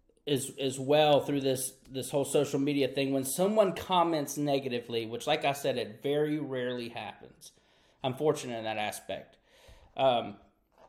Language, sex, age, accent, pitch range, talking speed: English, male, 30-49, American, 135-190 Hz, 160 wpm